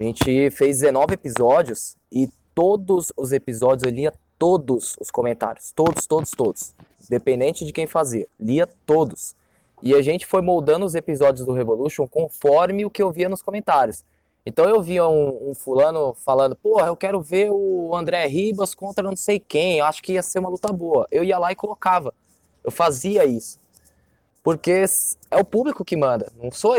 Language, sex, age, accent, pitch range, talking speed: Portuguese, male, 20-39, Brazilian, 135-195 Hz, 180 wpm